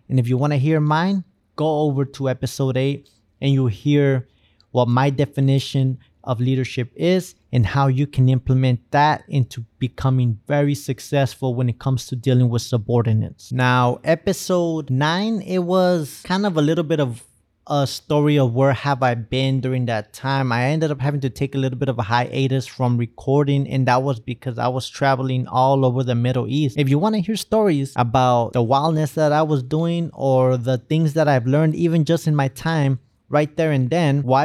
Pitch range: 125-150 Hz